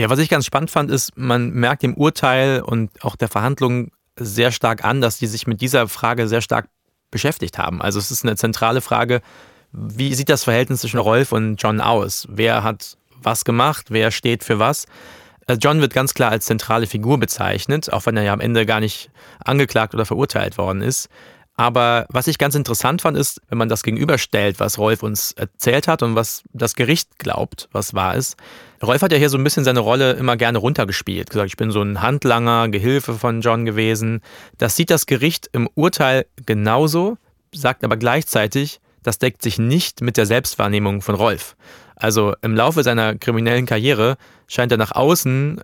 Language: German